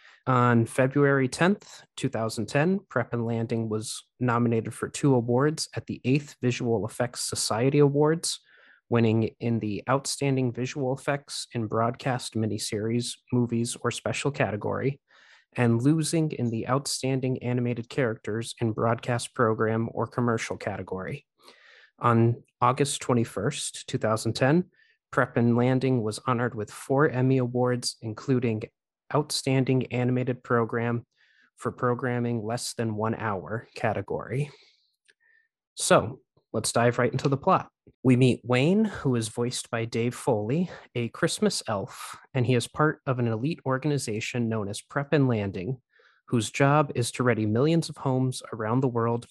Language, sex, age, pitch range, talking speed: English, male, 30-49, 115-140 Hz, 135 wpm